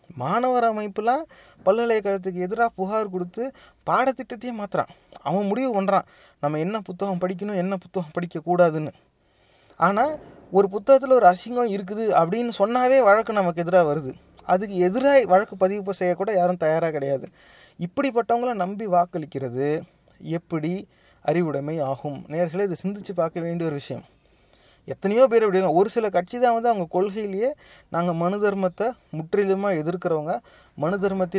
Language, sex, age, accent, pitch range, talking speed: English, male, 30-49, Indian, 170-215 Hz, 120 wpm